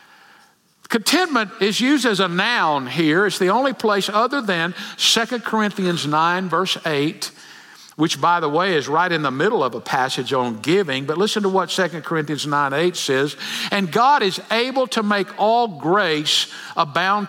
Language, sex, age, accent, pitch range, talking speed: English, male, 50-69, American, 185-240 Hz, 175 wpm